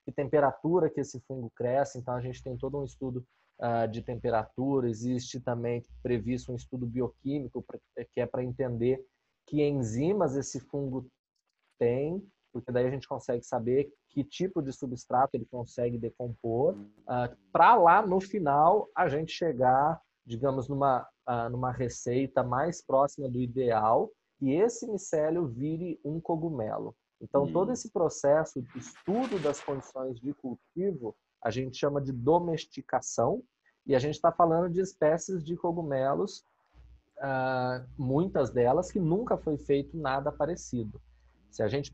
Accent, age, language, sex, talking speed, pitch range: Brazilian, 20-39, Portuguese, male, 145 wpm, 125-155 Hz